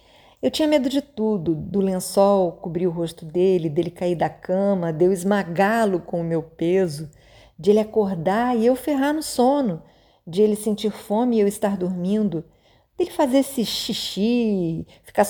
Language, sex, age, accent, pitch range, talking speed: Portuguese, female, 50-69, Brazilian, 170-225 Hz, 175 wpm